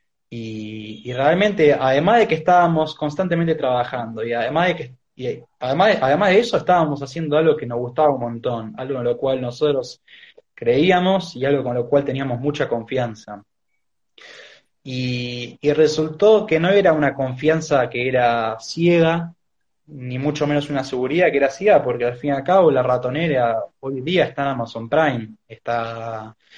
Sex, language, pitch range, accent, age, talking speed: male, Spanish, 120-155 Hz, Argentinian, 20-39, 170 wpm